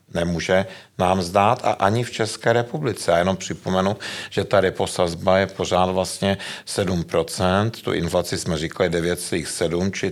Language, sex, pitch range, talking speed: Czech, male, 85-105 Hz, 140 wpm